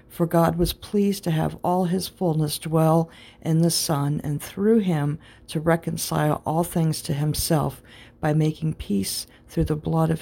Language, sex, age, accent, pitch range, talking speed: English, female, 50-69, American, 120-170 Hz, 170 wpm